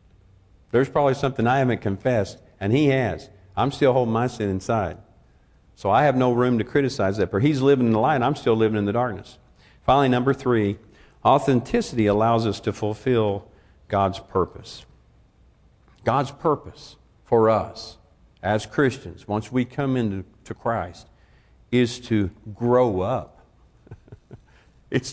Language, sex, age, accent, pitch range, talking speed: English, male, 50-69, American, 95-140 Hz, 150 wpm